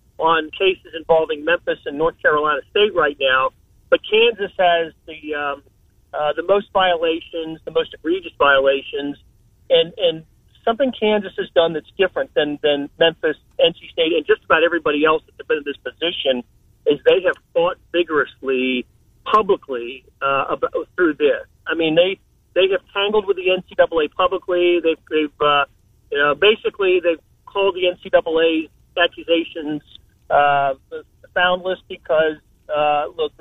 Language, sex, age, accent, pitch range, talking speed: English, male, 40-59, American, 155-195 Hz, 150 wpm